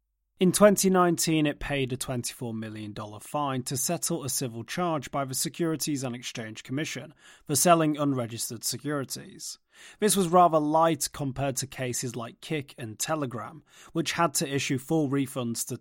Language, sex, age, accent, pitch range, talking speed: English, male, 30-49, British, 125-165 Hz, 155 wpm